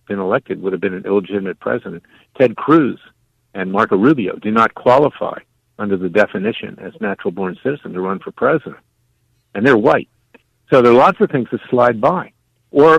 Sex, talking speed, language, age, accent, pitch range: male, 180 wpm, English, 60-79, American, 100-125 Hz